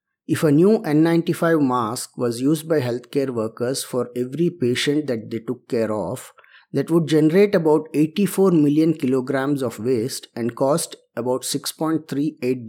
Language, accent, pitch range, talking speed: English, Indian, 120-155 Hz, 145 wpm